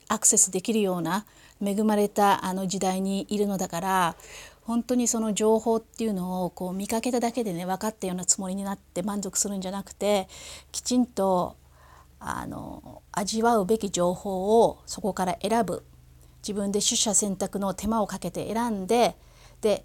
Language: Japanese